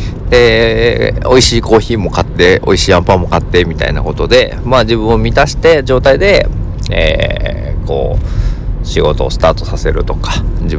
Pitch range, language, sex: 85-110 Hz, Japanese, male